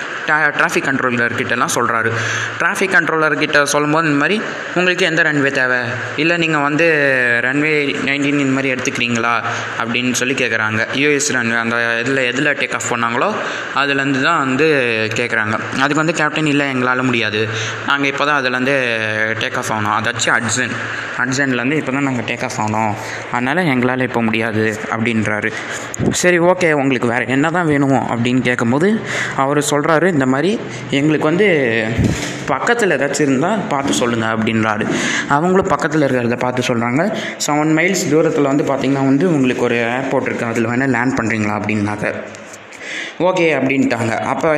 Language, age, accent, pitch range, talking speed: Tamil, 20-39, native, 120-150 Hz, 145 wpm